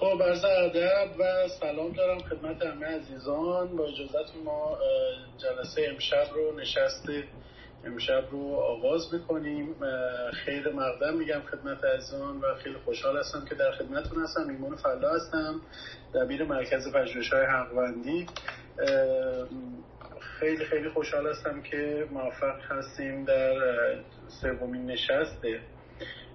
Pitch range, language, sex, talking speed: 125-175 Hz, Persian, male, 115 wpm